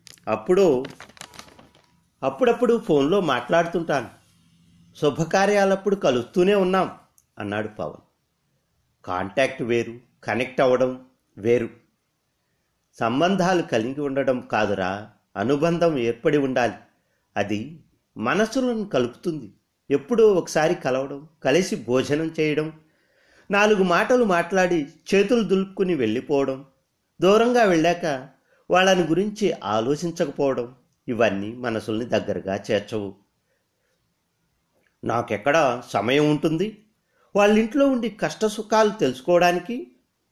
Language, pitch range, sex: Telugu, 125-185 Hz, male